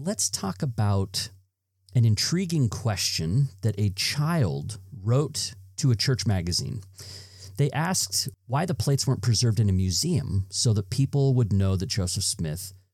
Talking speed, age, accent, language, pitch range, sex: 150 wpm, 40-59, American, English, 95-130 Hz, male